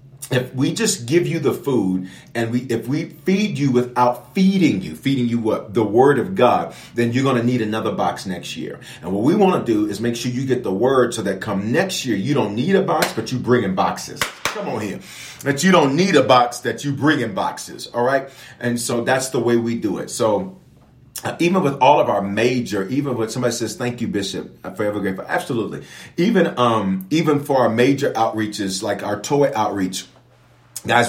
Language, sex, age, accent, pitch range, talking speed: English, male, 40-59, American, 110-135 Hz, 220 wpm